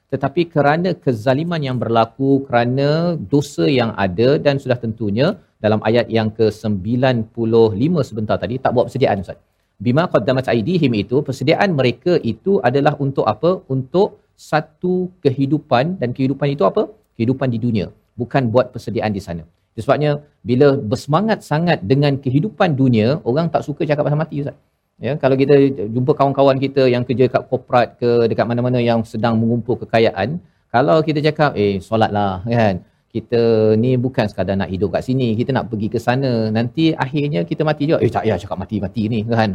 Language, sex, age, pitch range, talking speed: Malayalam, male, 40-59, 115-150 Hz, 165 wpm